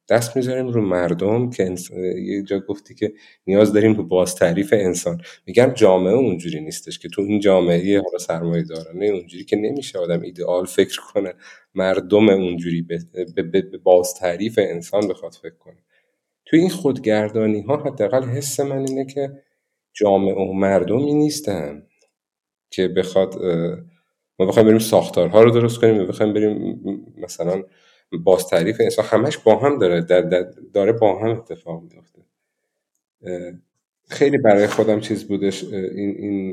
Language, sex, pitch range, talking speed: Persian, male, 90-110 Hz, 145 wpm